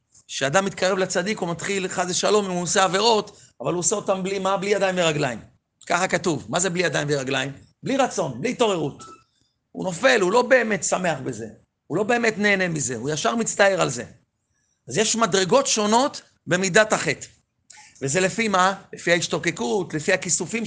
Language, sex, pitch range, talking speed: Hebrew, male, 175-220 Hz, 175 wpm